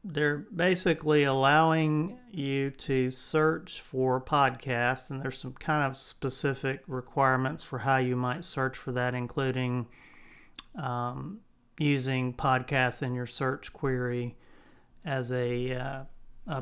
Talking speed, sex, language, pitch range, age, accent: 120 wpm, male, English, 130-150 Hz, 40-59, American